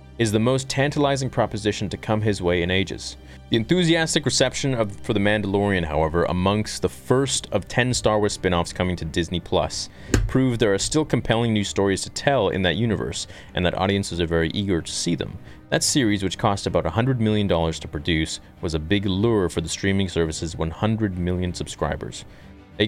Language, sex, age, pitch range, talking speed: English, male, 30-49, 90-115 Hz, 190 wpm